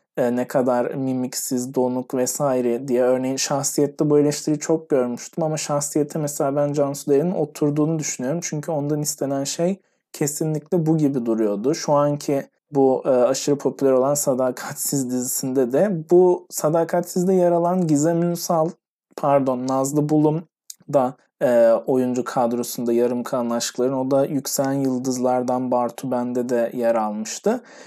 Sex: male